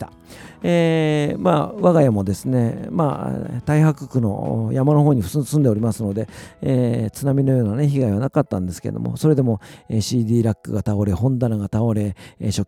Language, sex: Japanese, male